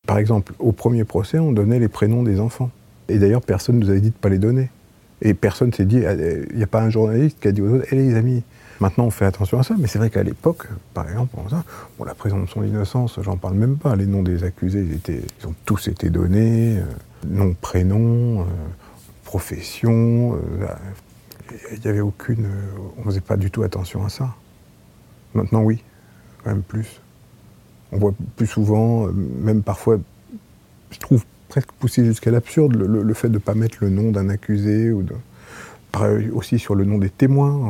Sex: male